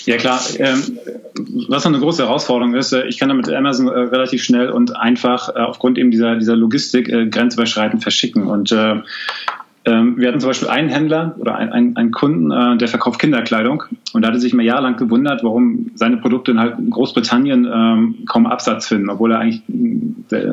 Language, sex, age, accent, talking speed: German, male, 30-49, German, 155 wpm